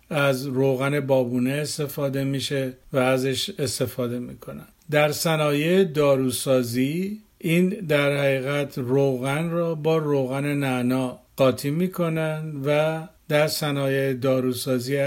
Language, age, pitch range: Persian, 50-69, 130-155 Hz